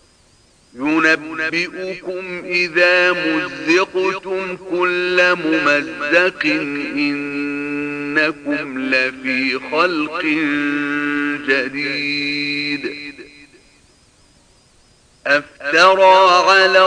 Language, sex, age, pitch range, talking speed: Arabic, male, 50-69, 150-185 Hz, 40 wpm